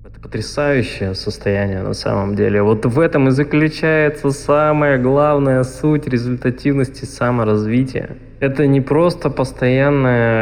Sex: male